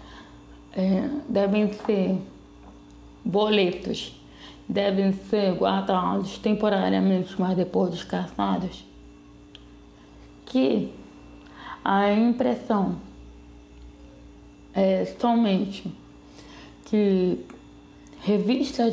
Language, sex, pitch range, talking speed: Portuguese, female, 180-220 Hz, 60 wpm